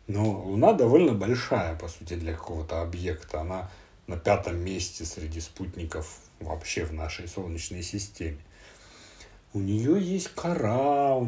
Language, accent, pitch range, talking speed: Russian, native, 85-110 Hz, 135 wpm